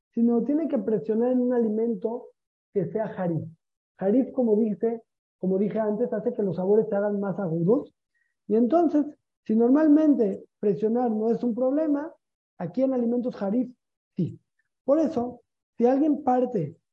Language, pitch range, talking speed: Spanish, 195-245 Hz, 150 wpm